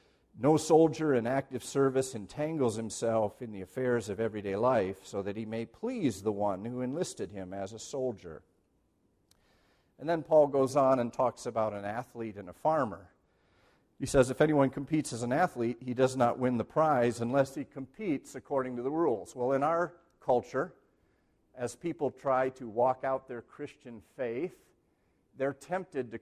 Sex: male